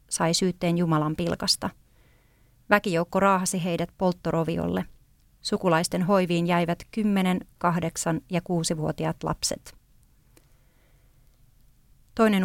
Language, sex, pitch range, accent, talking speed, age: Finnish, female, 170-205 Hz, native, 80 wpm, 30-49